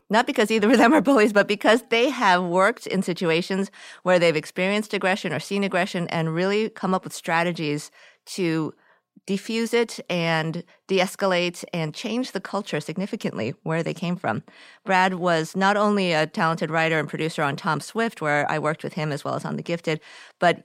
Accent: American